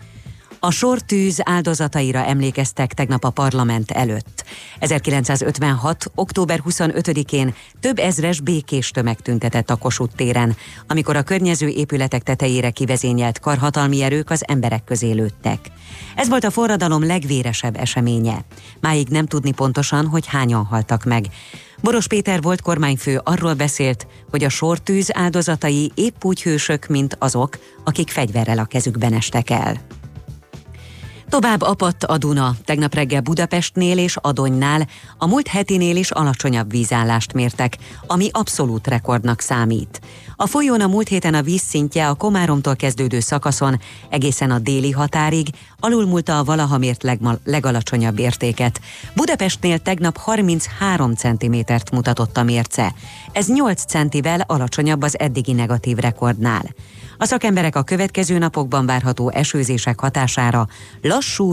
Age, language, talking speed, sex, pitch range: 30-49, Hungarian, 130 wpm, female, 120-165 Hz